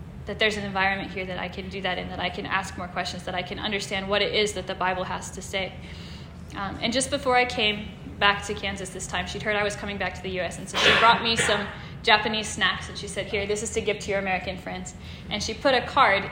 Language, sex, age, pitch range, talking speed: English, female, 10-29, 195-230 Hz, 275 wpm